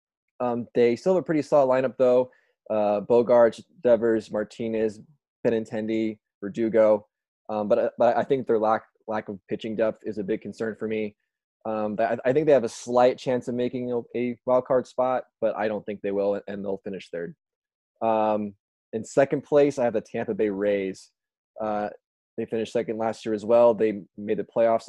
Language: English